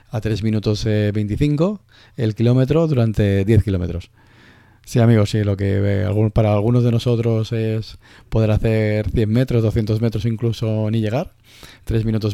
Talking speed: 160 wpm